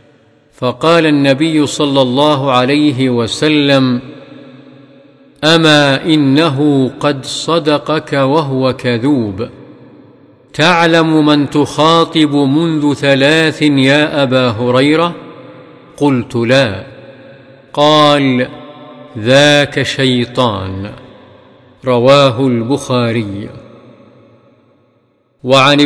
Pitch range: 135-160 Hz